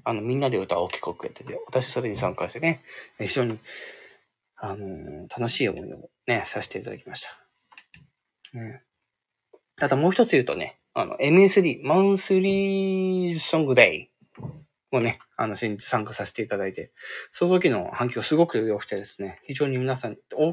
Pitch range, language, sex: 110-170 Hz, Japanese, male